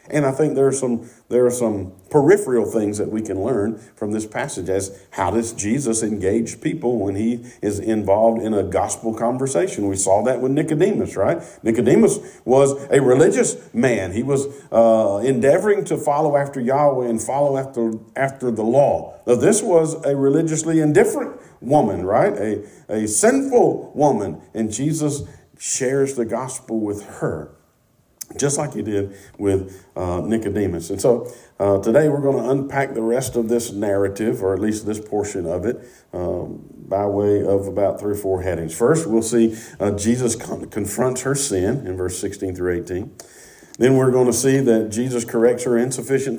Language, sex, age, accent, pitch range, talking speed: English, male, 50-69, American, 100-135 Hz, 170 wpm